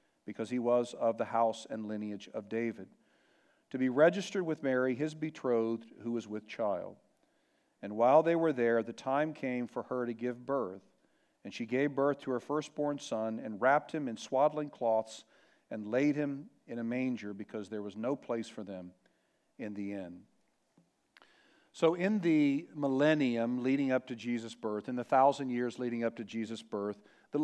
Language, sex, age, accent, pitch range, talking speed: English, male, 50-69, American, 120-150 Hz, 180 wpm